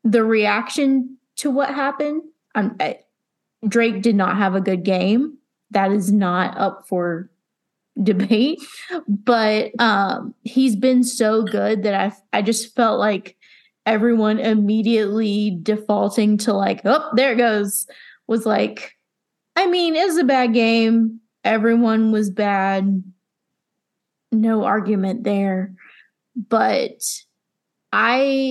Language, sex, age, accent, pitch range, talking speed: English, female, 20-39, American, 200-250 Hz, 120 wpm